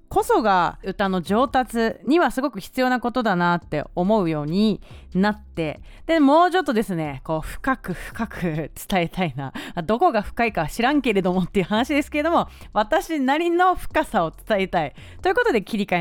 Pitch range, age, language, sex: 185-300 Hz, 30-49, Japanese, female